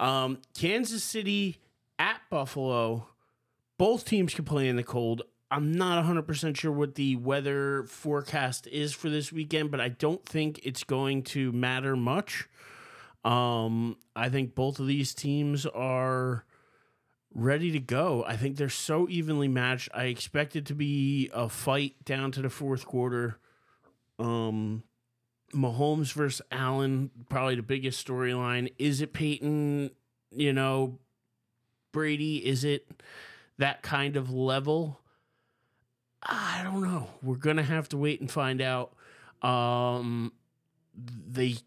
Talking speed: 140 wpm